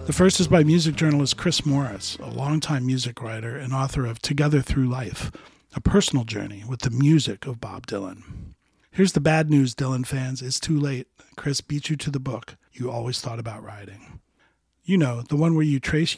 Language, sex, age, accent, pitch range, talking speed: English, male, 40-59, American, 125-155 Hz, 200 wpm